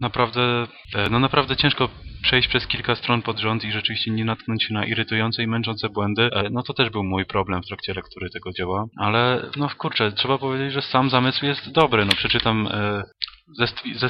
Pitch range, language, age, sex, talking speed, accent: 95-120 Hz, English, 20-39, male, 185 wpm, Polish